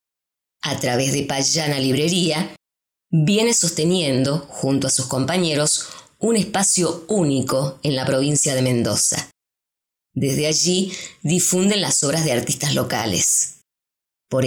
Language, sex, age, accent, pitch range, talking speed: English, female, 20-39, Argentinian, 135-175 Hz, 115 wpm